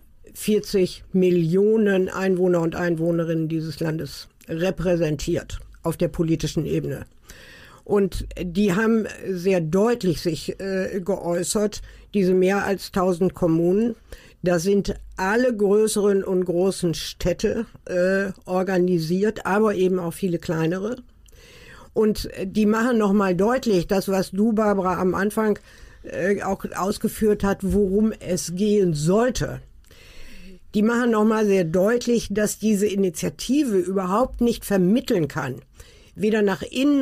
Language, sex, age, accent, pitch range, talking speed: German, female, 50-69, German, 175-215 Hz, 120 wpm